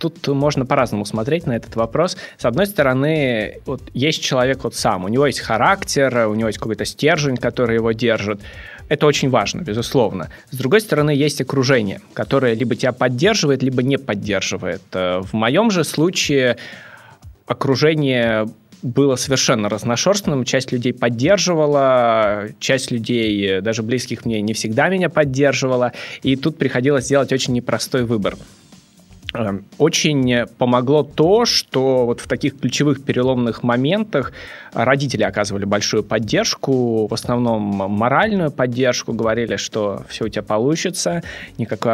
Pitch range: 115-145 Hz